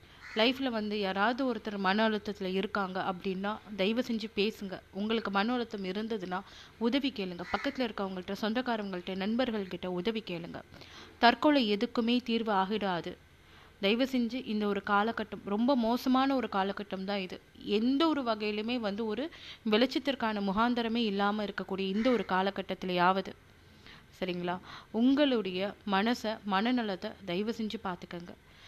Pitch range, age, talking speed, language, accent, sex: 190-230 Hz, 30-49, 120 wpm, Tamil, native, female